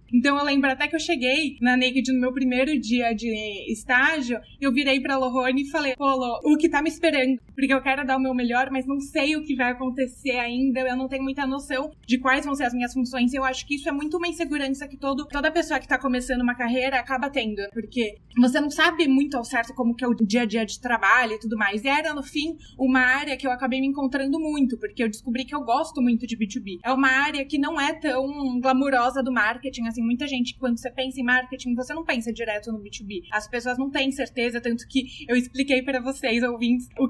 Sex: female